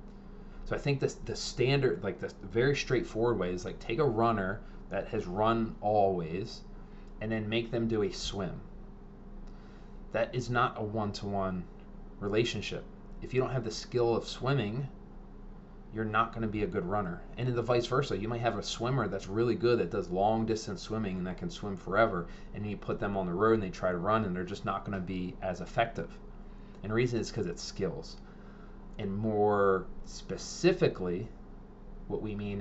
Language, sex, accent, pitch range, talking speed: English, male, American, 100-115 Hz, 190 wpm